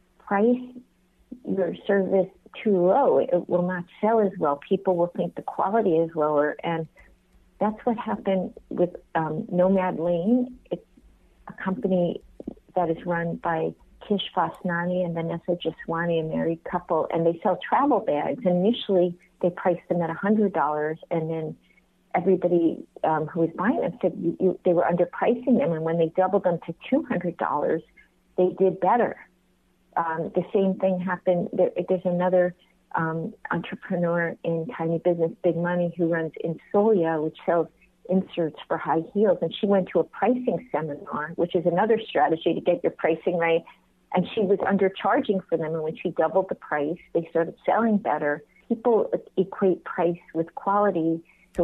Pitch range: 165-195 Hz